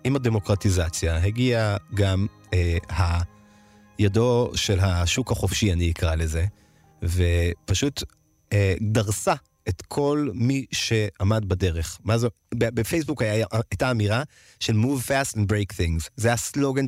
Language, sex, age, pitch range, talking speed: Hebrew, male, 30-49, 95-120 Hz, 115 wpm